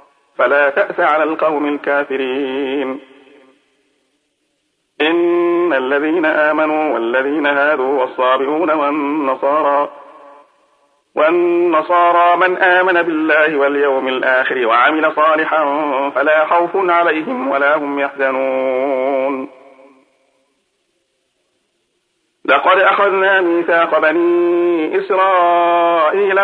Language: Arabic